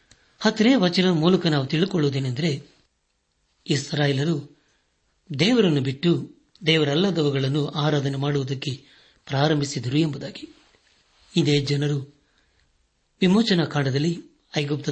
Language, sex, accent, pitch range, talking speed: Kannada, male, native, 140-170 Hz, 70 wpm